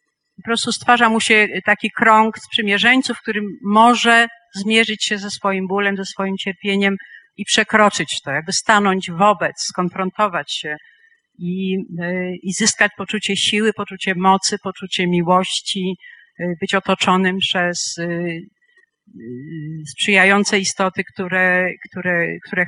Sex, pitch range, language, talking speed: female, 180-215 Hz, Polish, 110 wpm